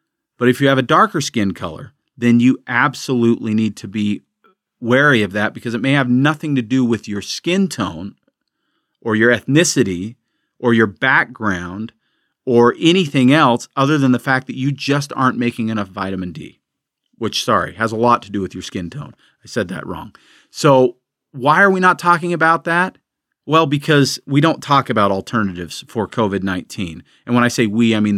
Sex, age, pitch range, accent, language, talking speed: male, 40-59, 105-135 Hz, American, English, 185 wpm